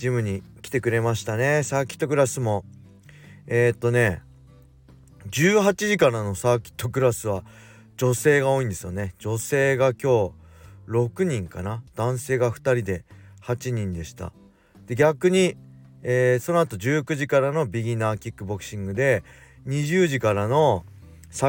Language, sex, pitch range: Japanese, male, 95-130 Hz